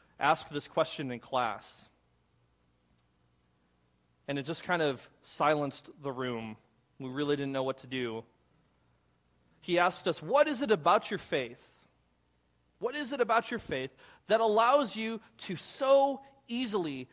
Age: 30-49